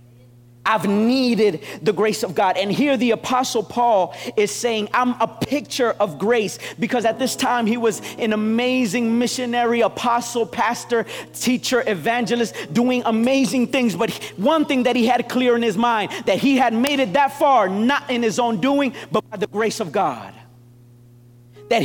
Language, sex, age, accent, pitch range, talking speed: English, male, 40-59, American, 215-265 Hz, 175 wpm